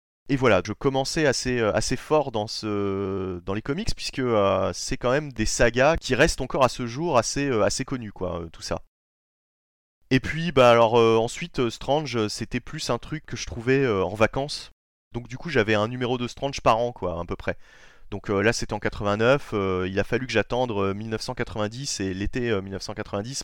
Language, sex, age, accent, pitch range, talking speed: French, male, 30-49, French, 100-135 Hz, 205 wpm